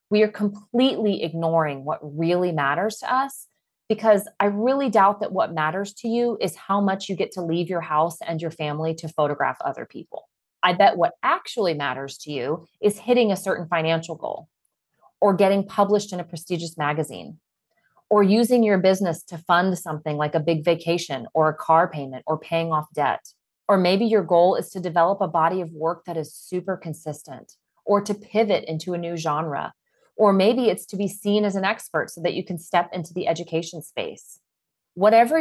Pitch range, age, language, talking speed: 165-215 Hz, 30-49, English, 195 wpm